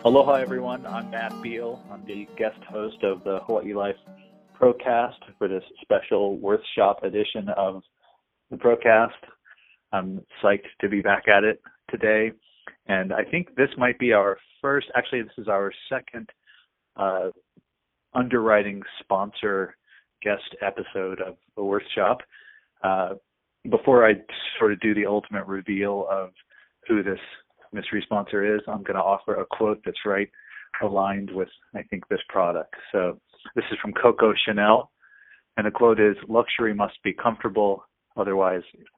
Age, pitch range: 30-49, 100-125 Hz